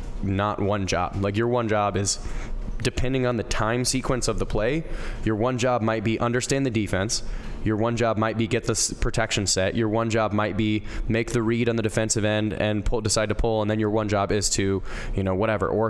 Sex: male